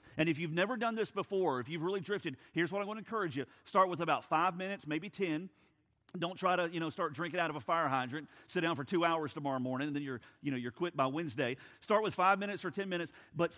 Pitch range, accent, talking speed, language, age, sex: 135-175 Hz, American, 270 wpm, English, 40-59, male